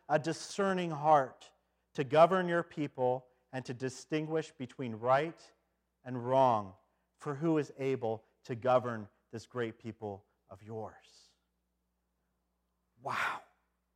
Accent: American